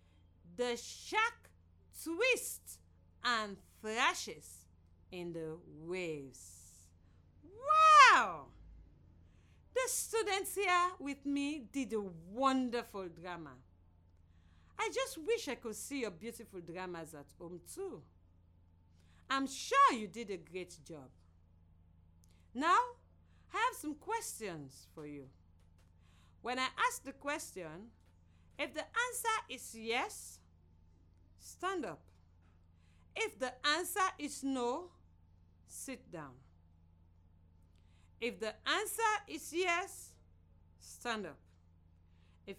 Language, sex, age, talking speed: English, female, 50-69, 100 wpm